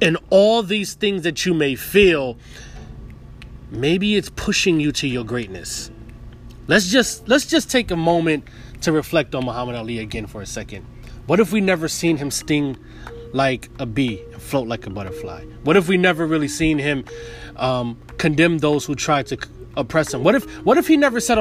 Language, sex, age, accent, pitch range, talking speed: English, male, 30-49, American, 125-175 Hz, 190 wpm